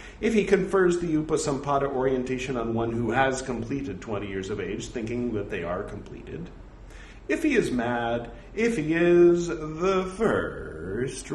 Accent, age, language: American, 40-59, English